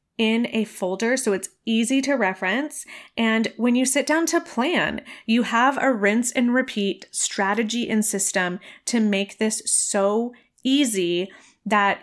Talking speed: 150 wpm